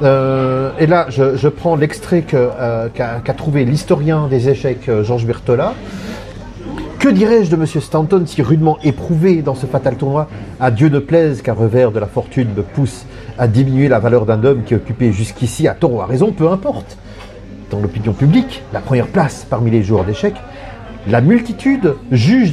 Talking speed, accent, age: 185 wpm, French, 40-59